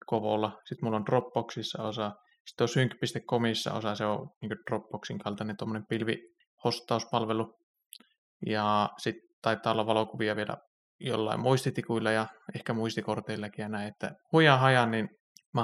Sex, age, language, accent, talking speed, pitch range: male, 20-39, Finnish, native, 130 wpm, 110-125 Hz